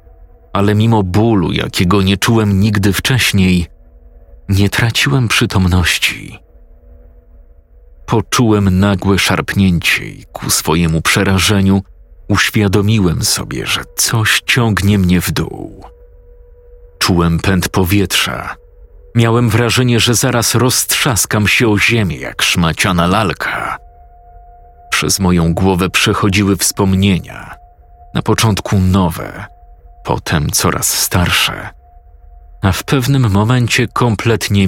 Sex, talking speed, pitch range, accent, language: male, 95 wpm, 80-105 Hz, native, Polish